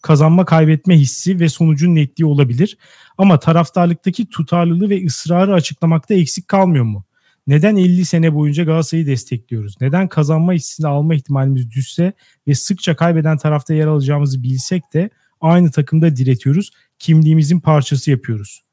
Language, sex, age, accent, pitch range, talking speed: Turkish, male, 40-59, native, 140-185 Hz, 135 wpm